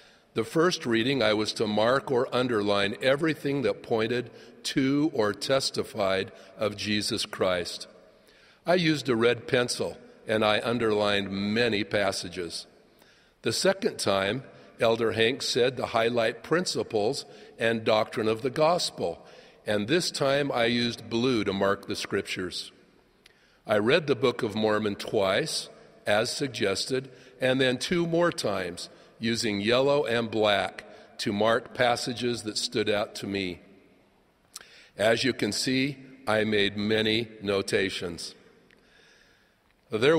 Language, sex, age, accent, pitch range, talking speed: English, male, 50-69, American, 105-130 Hz, 130 wpm